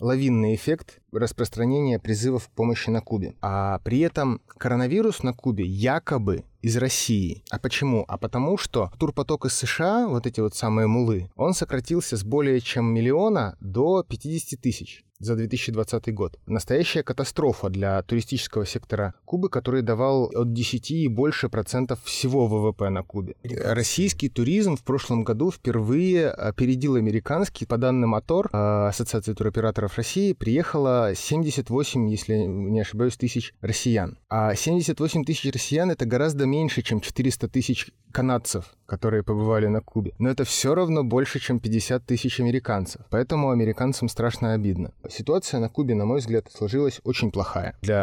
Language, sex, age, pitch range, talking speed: Russian, male, 30-49, 110-135 Hz, 145 wpm